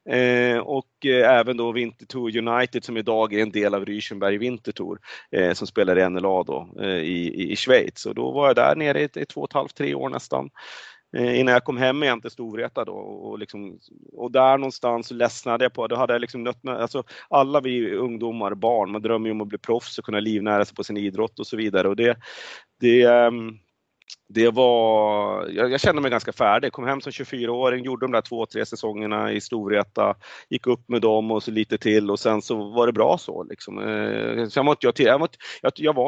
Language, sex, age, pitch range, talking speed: Swedish, male, 30-49, 105-125 Hz, 215 wpm